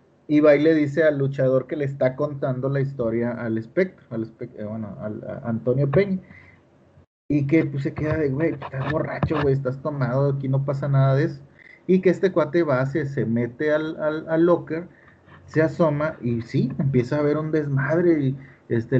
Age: 30-49